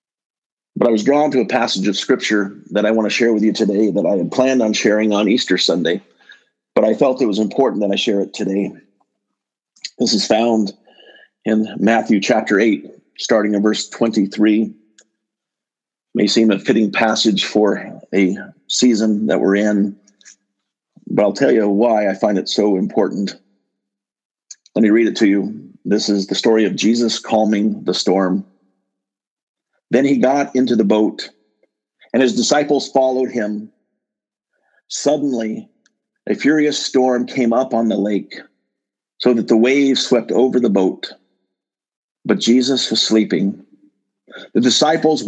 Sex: male